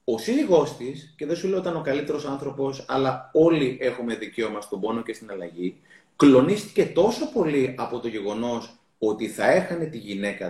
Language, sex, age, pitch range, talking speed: Greek, male, 30-49, 130-185 Hz, 185 wpm